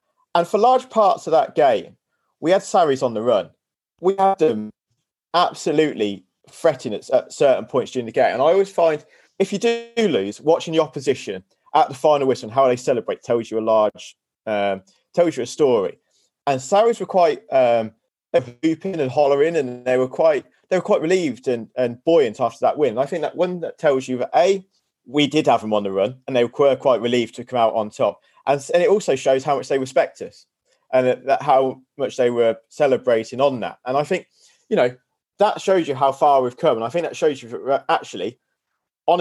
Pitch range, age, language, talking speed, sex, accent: 125-195 Hz, 30-49, English, 220 wpm, male, British